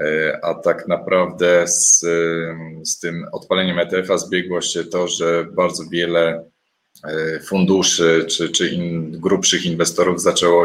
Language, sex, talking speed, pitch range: Polish, male, 120 wpm, 85-100 Hz